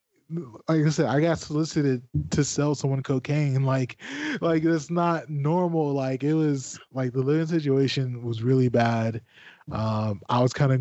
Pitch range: 115-140 Hz